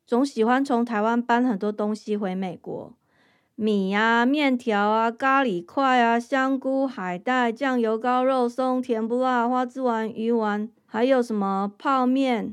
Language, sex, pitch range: Chinese, female, 210-255 Hz